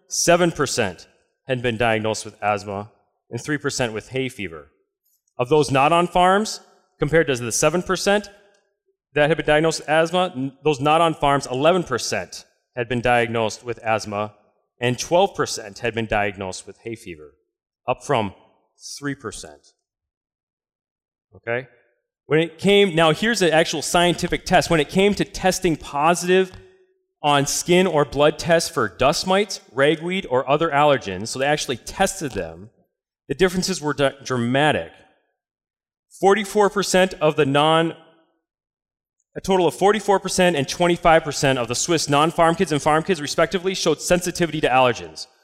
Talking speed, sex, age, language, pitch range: 150 wpm, male, 30-49, English, 135-185 Hz